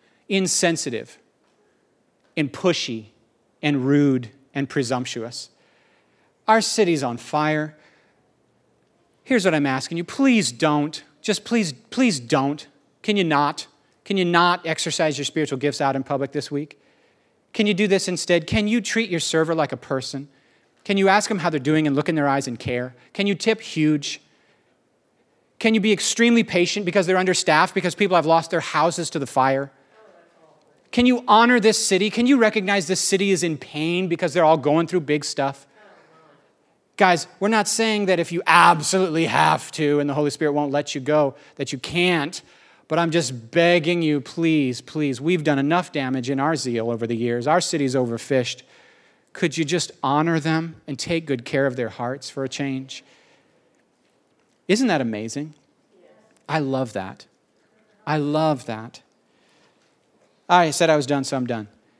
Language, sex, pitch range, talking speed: English, male, 135-180 Hz, 170 wpm